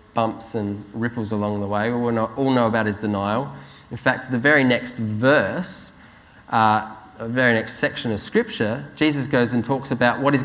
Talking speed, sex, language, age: 185 wpm, male, English, 20-39